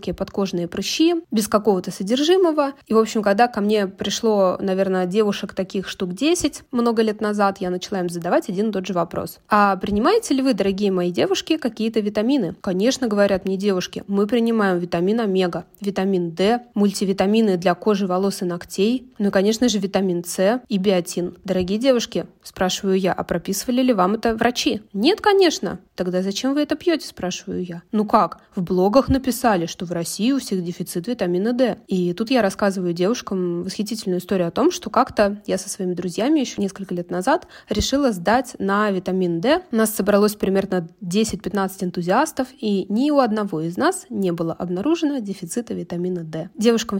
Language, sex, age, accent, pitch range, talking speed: Russian, female, 20-39, native, 185-235 Hz, 175 wpm